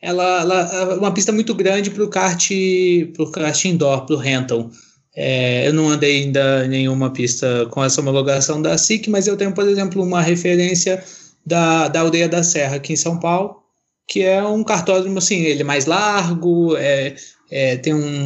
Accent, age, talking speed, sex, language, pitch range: Brazilian, 20-39, 175 wpm, male, Portuguese, 140-185 Hz